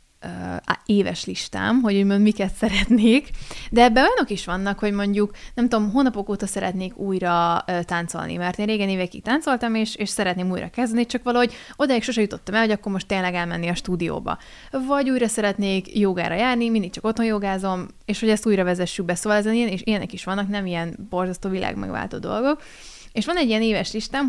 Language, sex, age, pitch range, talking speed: Hungarian, female, 20-39, 185-225 Hz, 185 wpm